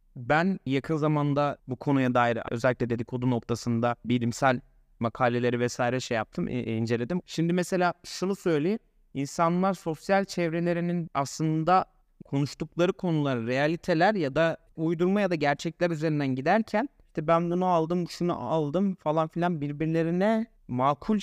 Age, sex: 30-49, male